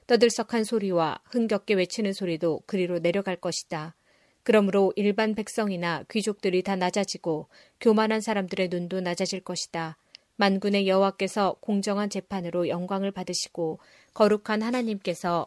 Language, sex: Korean, female